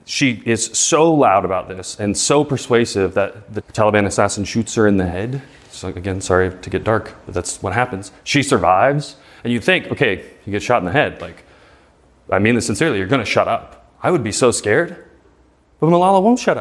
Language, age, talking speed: English, 30-49, 215 wpm